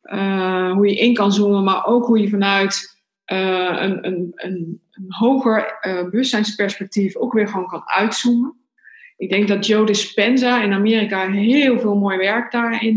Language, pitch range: Dutch, 185-220 Hz